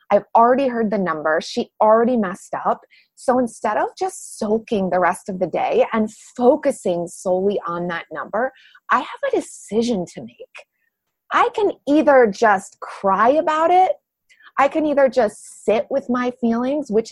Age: 30-49